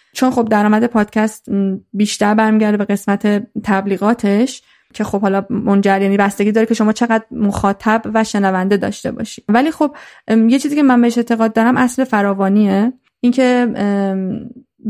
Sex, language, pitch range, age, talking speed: female, Persian, 200-235 Hz, 30-49, 140 wpm